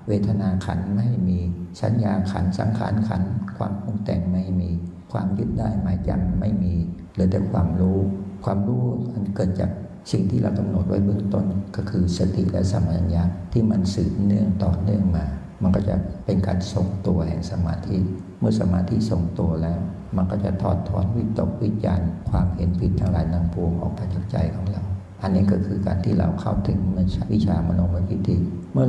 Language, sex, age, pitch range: Thai, male, 60-79, 90-100 Hz